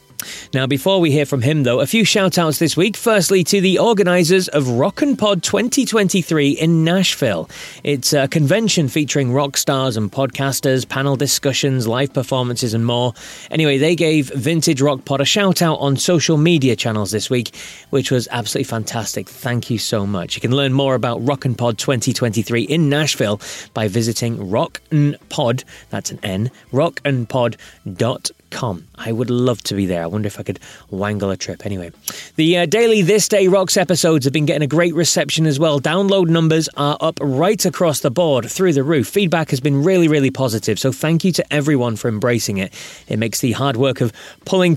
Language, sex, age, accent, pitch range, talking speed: English, male, 30-49, British, 115-160 Hz, 190 wpm